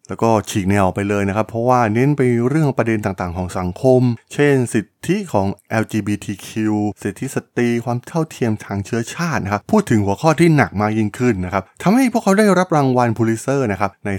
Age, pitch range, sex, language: 20-39, 100-130 Hz, male, Thai